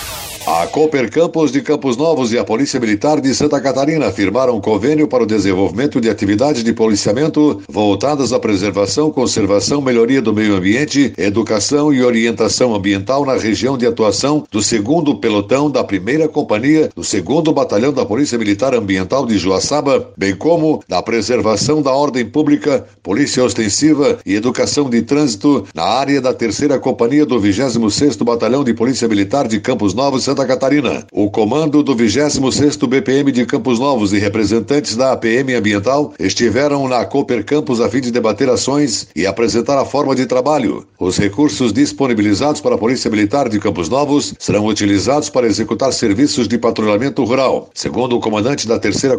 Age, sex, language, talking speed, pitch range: 60-79, male, Portuguese, 165 wpm, 110-145 Hz